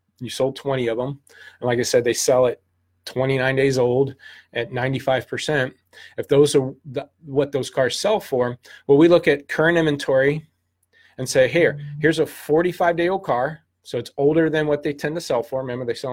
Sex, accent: male, American